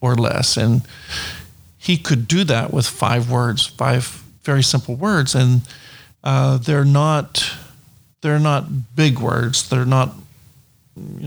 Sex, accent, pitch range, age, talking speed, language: male, American, 125-145 Hz, 50-69, 135 wpm, English